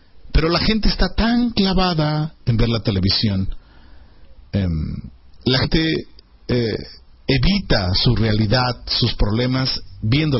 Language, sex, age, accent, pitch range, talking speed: Spanish, male, 50-69, Mexican, 85-145 Hz, 115 wpm